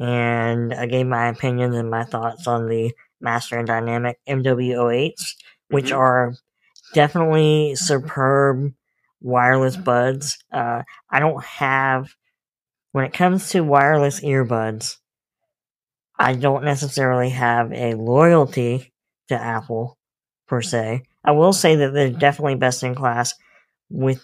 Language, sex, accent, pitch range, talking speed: English, female, American, 120-150 Hz, 120 wpm